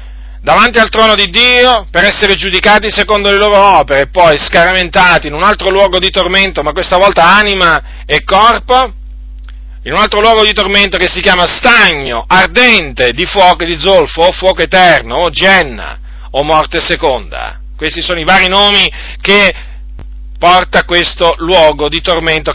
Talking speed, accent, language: 165 wpm, native, Italian